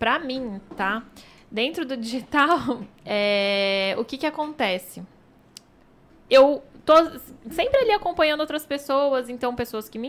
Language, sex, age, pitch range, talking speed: Portuguese, female, 10-29, 230-300 Hz, 125 wpm